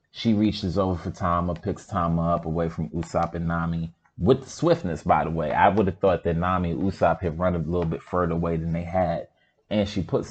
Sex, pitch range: male, 85-110 Hz